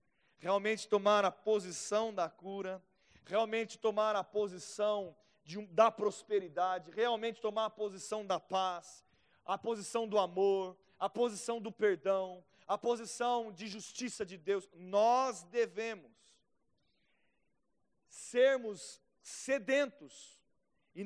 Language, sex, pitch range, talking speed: Portuguese, male, 155-215 Hz, 105 wpm